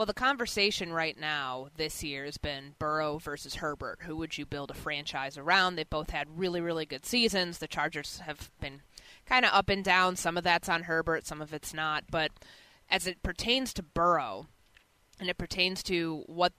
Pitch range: 155-195 Hz